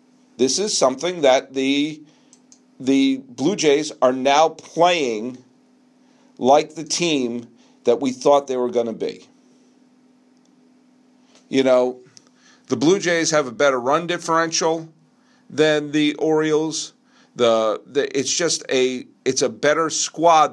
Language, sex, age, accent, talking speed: English, male, 50-69, American, 130 wpm